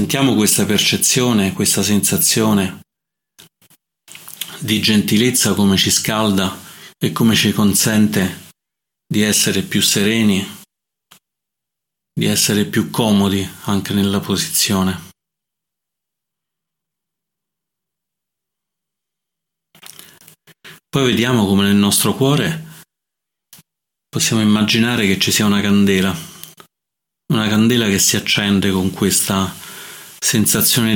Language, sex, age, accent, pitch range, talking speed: Italian, male, 30-49, native, 100-165 Hz, 90 wpm